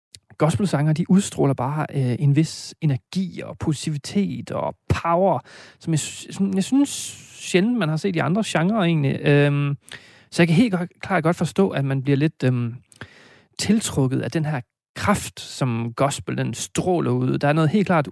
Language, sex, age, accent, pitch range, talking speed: Danish, male, 30-49, native, 130-170 Hz, 175 wpm